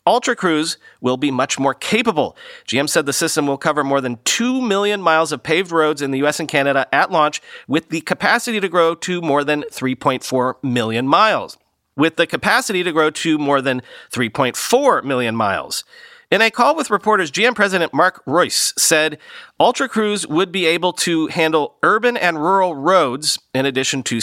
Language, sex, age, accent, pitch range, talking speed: English, male, 40-59, American, 140-190 Hz, 180 wpm